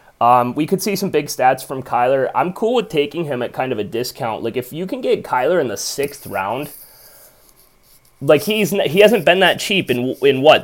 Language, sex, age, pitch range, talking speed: English, male, 20-39, 110-145 Hz, 220 wpm